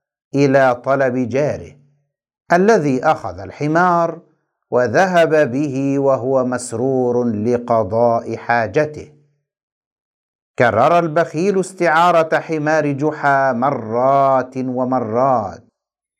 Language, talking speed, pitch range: Arabic, 70 wpm, 130-170 Hz